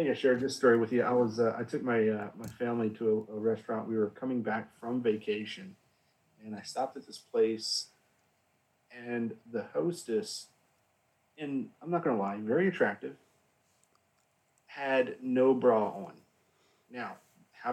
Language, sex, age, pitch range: English, male, 40-59, 110-130 Hz